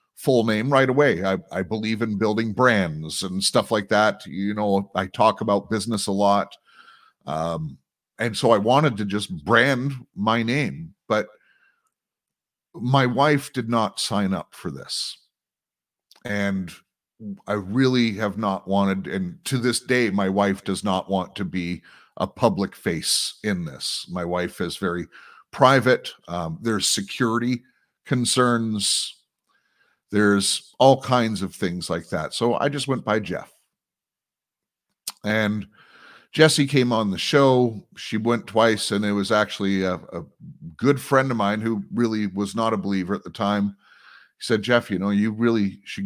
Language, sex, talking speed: English, male, 160 wpm